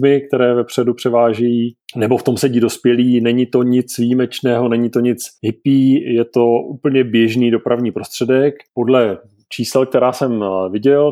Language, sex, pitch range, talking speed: Czech, male, 110-125 Hz, 145 wpm